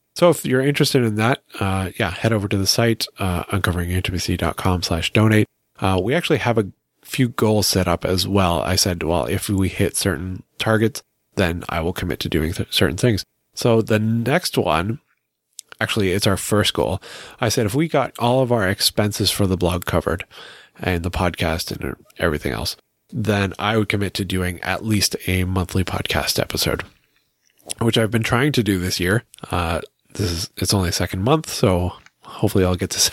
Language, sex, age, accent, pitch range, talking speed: English, male, 30-49, American, 90-115 Hz, 190 wpm